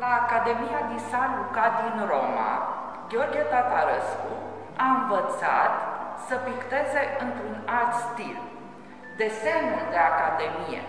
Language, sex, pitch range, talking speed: Romanian, female, 200-260 Hz, 105 wpm